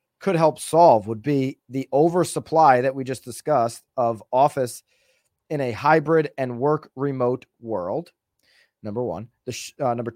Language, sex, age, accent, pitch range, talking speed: English, male, 30-49, American, 130-170 Hz, 155 wpm